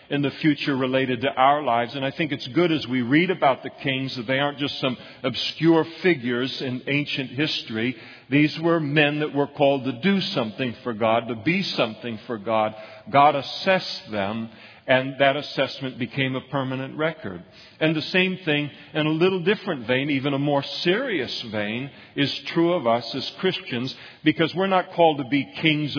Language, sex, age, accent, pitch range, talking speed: English, male, 50-69, American, 120-155 Hz, 185 wpm